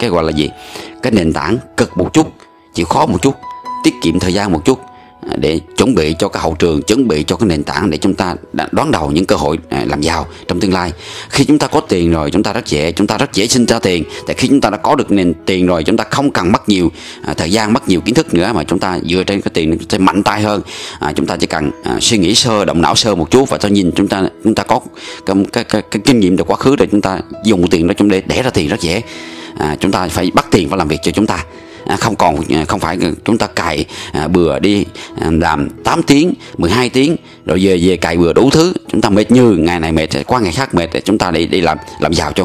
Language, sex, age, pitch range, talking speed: Vietnamese, male, 20-39, 85-110 Hz, 280 wpm